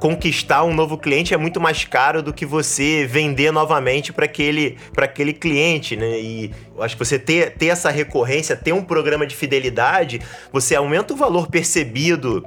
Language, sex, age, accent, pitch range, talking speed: Portuguese, male, 20-39, Brazilian, 135-170 Hz, 175 wpm